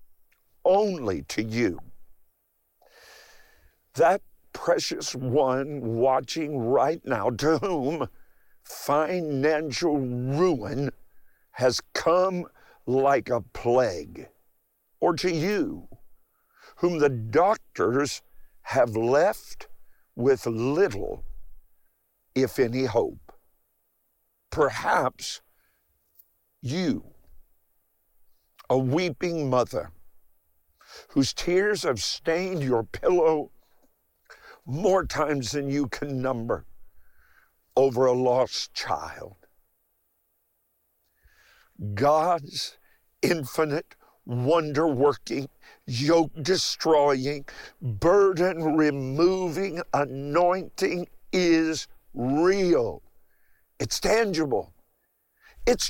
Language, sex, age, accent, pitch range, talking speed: English, male, 50-69, American, 125-170 Hz, 70 wpm